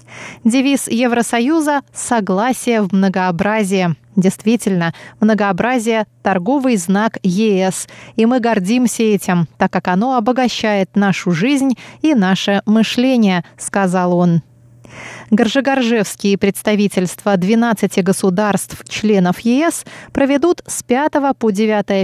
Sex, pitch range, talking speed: female, 190-245 Hz, 95 wpm